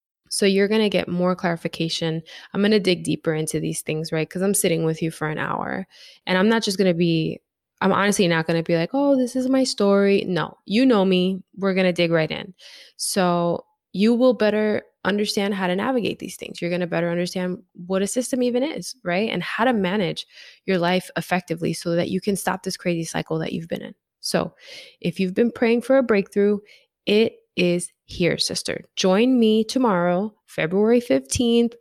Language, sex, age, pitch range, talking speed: English, female, 20-39, 170-220 Hz, 210 wpm